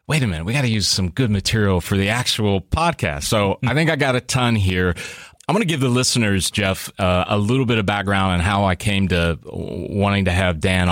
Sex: male